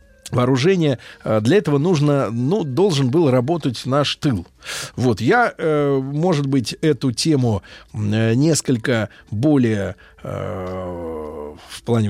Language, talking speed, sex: Russian, 100 wpm, male